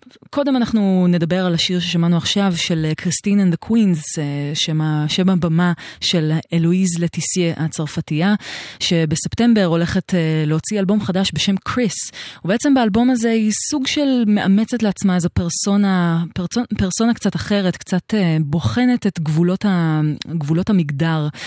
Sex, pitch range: female, 160-200 Hz